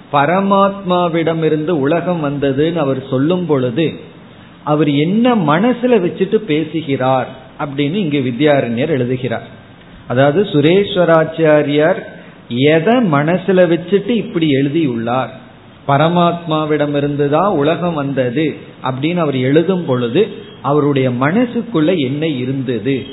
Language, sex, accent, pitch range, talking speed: Tamil, male, native, 140-180 Hz, 90 wpm